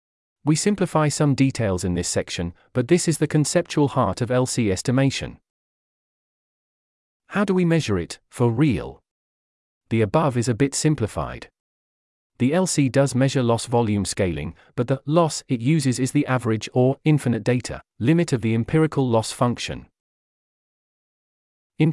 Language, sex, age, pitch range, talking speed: English, male, 40-59, 105-145 Hz, 150 wpm